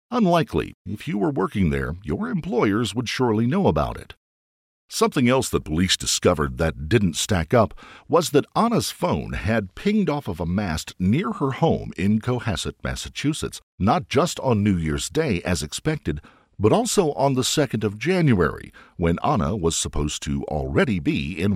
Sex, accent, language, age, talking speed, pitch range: male, American, English, 50-69, 170 wpm, 85-140 Hz